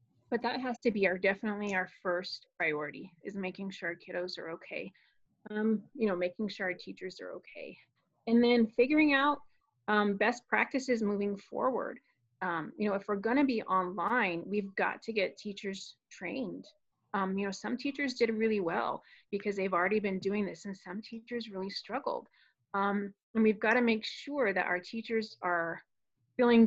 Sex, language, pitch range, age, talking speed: female, English, 185-225 Hz, 30-49, 180 wpm